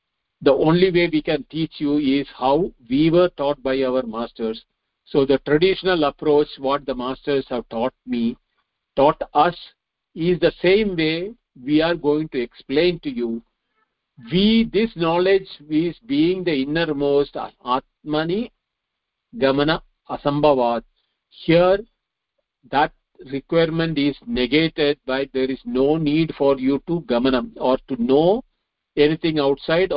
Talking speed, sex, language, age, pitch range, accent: 135 wpm, male, English, 50-69, 130-165 Hz, Indian